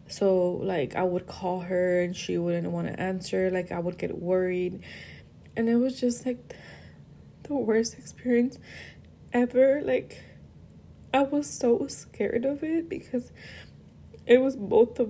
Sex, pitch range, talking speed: female, 185-235 Hz, 155 wpm